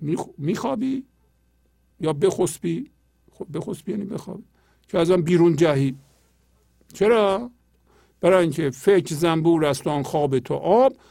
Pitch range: 130-195 Hz